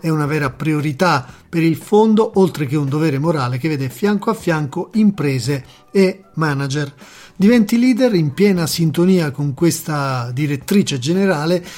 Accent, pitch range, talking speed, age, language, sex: native, 145-190 Hz, 150 wpm, 40-59, Italian, male